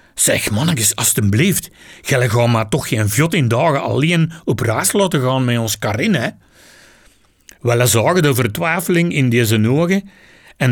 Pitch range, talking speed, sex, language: 115-155 Hz, 150 wpm, male, Dutch